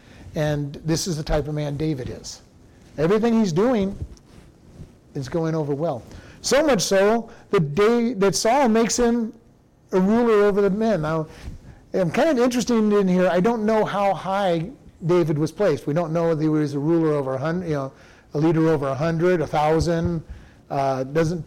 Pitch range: 145-195 Hz